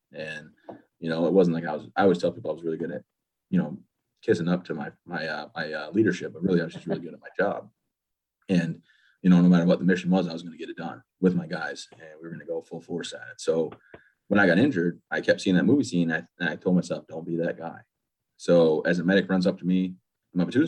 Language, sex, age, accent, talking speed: English, male, 30-49, American, 285 wpm